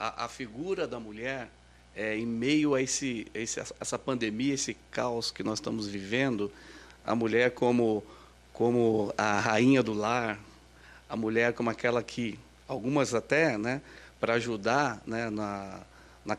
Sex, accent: male, Brazilian